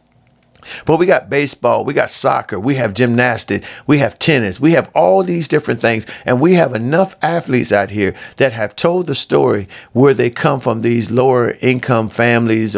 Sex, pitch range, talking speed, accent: male, 105-135 Hz, 185 wpm, American